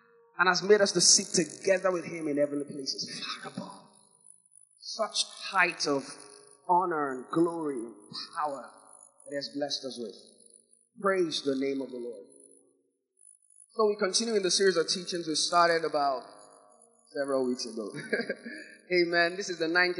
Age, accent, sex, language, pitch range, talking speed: 20-39, Jamaican, male, English, 140-185 Hz, 150 wpm